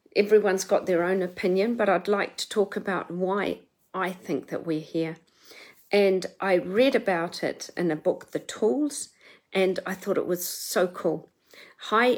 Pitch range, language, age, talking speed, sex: 190-245 Hz, English, 50-69, 170 wpm, female